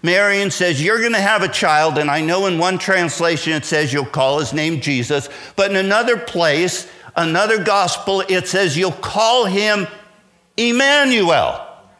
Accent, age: American, 50-69